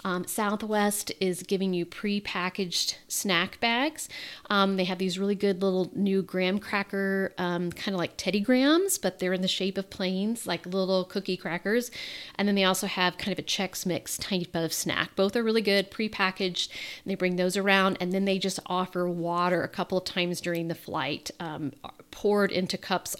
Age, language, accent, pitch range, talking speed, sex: 40-59, English, American, 175-200 Hz, 190 wpm, female